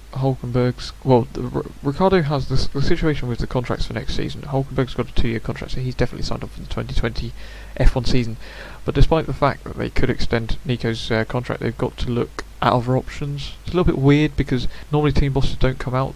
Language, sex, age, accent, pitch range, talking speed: English, male, 20-39, British, 125-140 Hz, 225 wpm